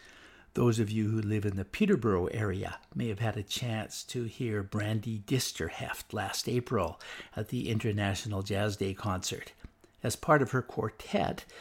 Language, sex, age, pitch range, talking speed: English, male, 60-79, 105-125 Hz, 160 wpm